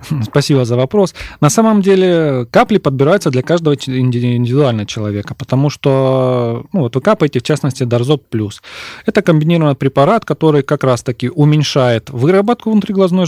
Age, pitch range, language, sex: 30-49, 120-155 Hz, Russian, male